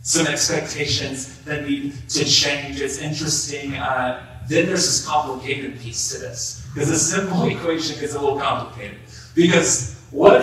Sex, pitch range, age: male, 125-170 Hz, 30-49